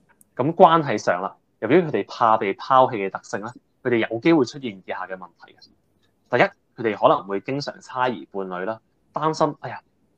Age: 20-39